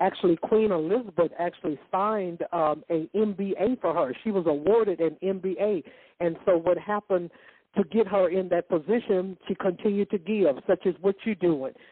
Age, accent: 60-79, American